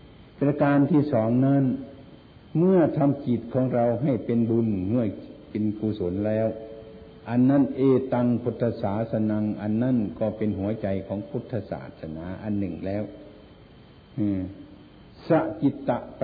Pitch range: 105-135 Hz